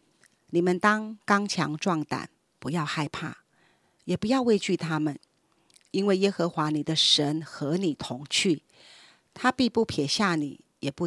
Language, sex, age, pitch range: Chinese, female, 40-59, 155-205 Hz